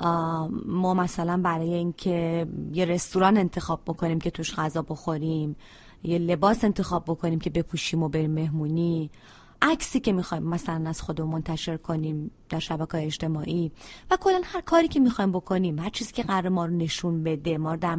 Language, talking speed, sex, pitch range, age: Persian, 165 wpm, female, 165-220 Hz, 30-49